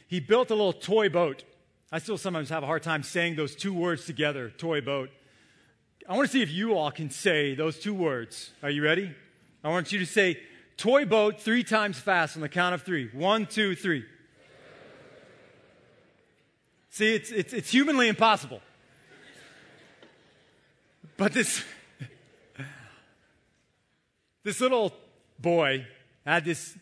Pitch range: 135-195 Hz